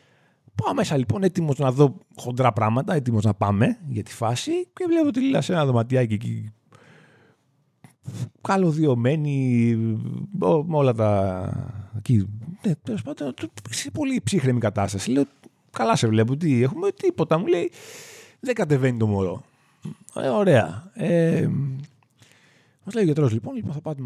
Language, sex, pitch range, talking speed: Greek, male, 110-160 Hz, 135 wpm